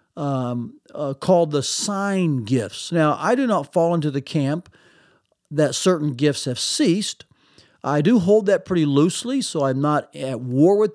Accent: American